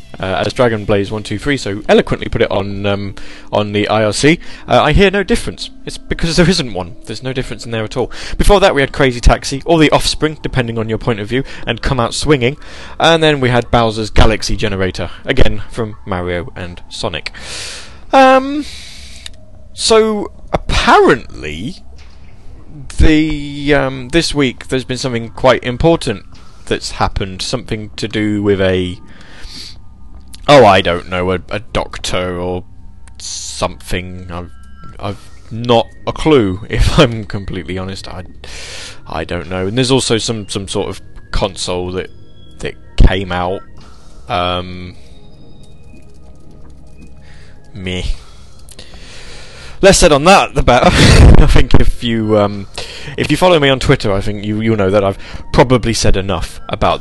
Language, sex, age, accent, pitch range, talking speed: English, male, 20-39, British, 90-125 Hz, 155 wpm